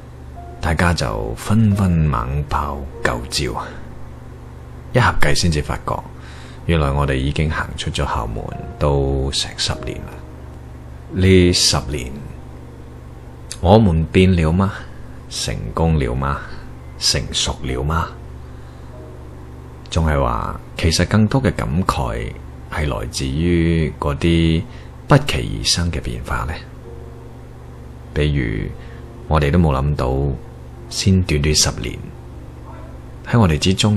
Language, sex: Chinese, male